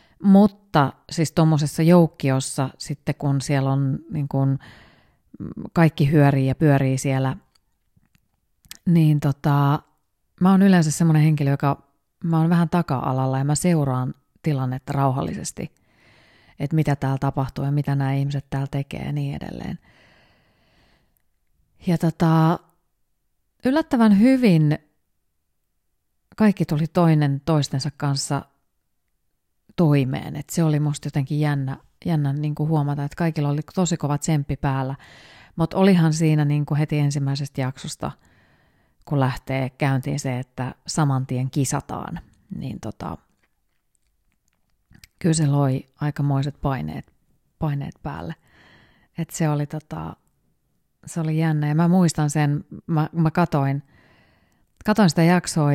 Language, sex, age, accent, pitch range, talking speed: Finnish, female, 30-49, native, 135-160 Hz, 120 wpm